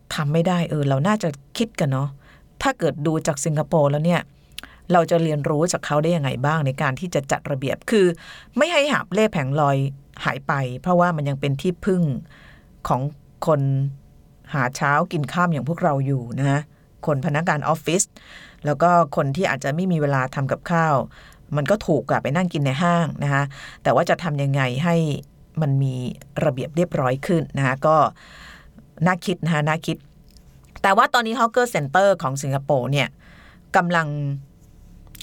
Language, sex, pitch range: Thai, female, 140-175 Hz